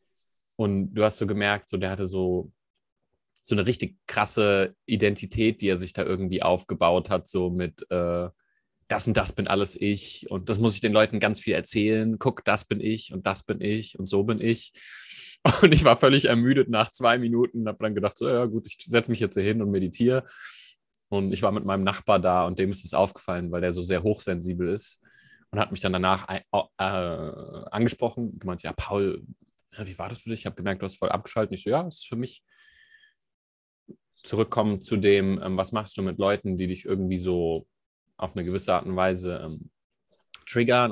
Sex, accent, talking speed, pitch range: male, German, 210 wpm, 95-110 Hz